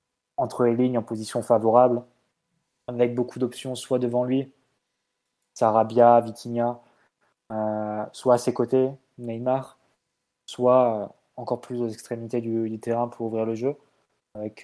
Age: 20-39